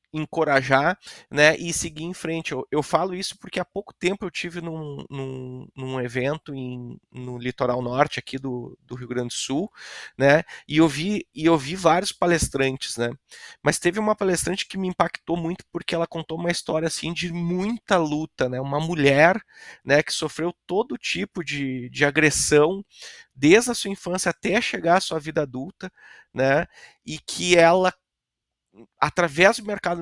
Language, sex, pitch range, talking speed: Portuguese, male, 135-170 Hz, 160 wpm